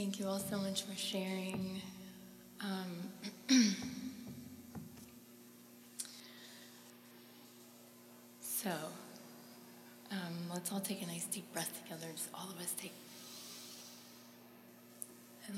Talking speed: 90 wpm